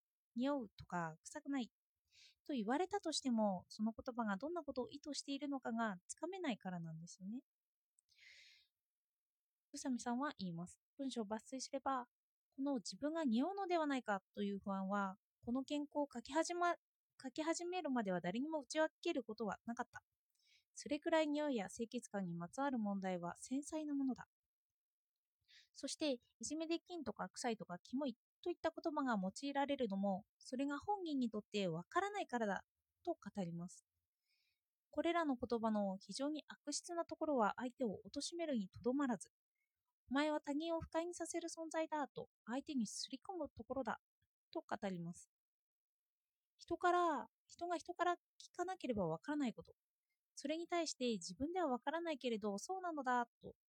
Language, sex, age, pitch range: Japanese, female, 20-39, 220-320 Hz